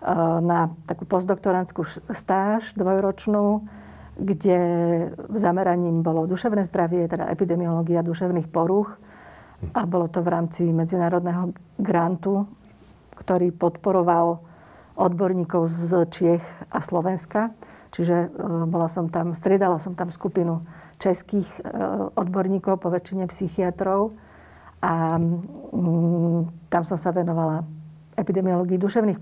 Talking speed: 95 wpm